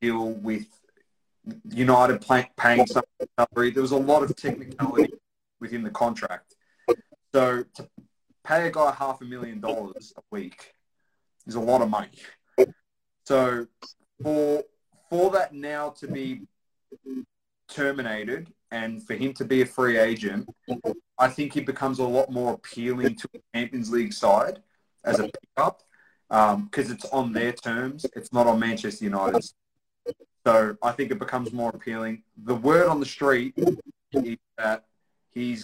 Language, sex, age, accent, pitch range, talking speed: English, male, 20-39, Australian, 110-135 Hz, 155 wpm